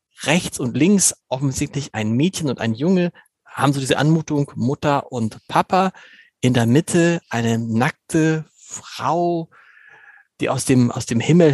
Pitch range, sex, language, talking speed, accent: 135-180 Hz, male, German, 145 wpm, German